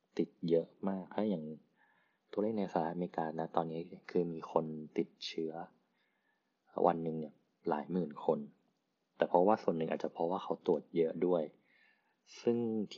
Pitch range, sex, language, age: 80-95 Hz, male, Thai, 20-39